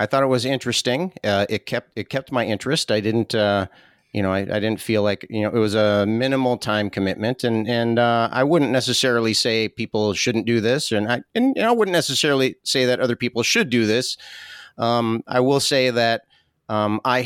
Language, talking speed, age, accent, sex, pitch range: English, 210 wpm, 40-59, American, male, 100-120 Hz